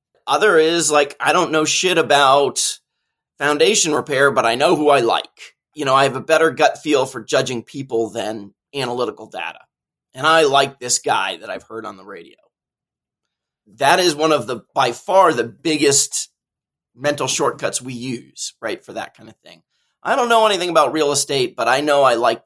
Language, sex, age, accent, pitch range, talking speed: English, male, 30-49, American, 120-160 Hz, 190 wpm